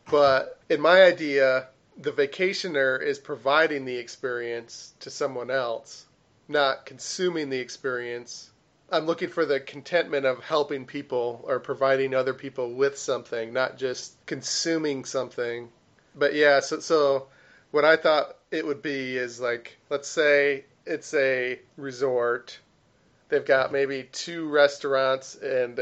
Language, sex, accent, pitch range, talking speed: English, male, American, 125-145 Hz, 135 wpm